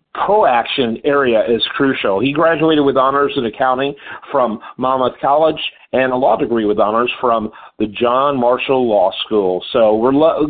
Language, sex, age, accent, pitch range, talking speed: English, male, 50-69, American, 135-180 Hz, 160 wpm